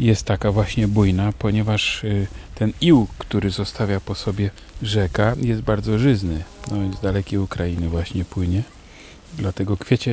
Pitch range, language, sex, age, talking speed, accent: 90-110 Hz, Polish, male, 40-59, 140 wpm, native